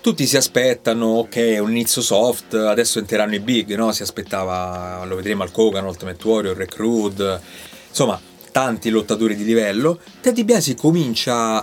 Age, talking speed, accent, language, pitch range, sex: 30-49, 155 wpm, native, Italian, 110-155 Hz, male